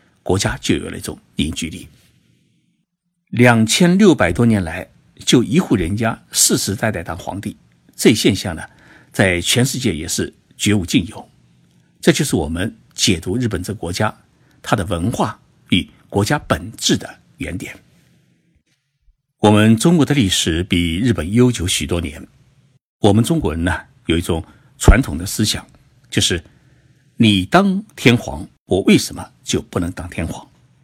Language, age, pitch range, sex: Chinese, 60-79, 95-140 Hz, male